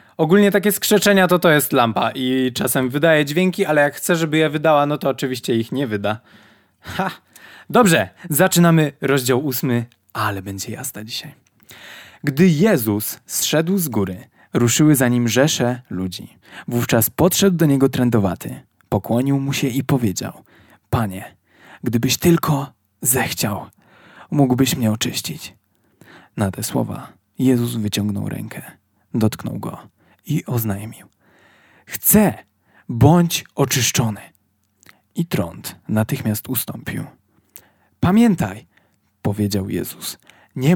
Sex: male